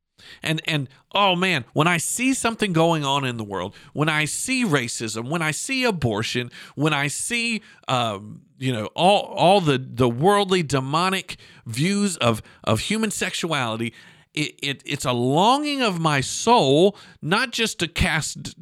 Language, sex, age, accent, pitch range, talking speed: English, male, 50-69, American, 120-190 Hz, 160 wpm